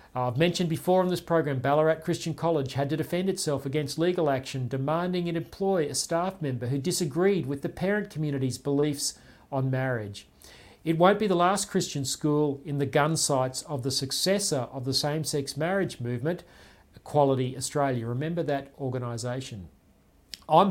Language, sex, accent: English, male, Australian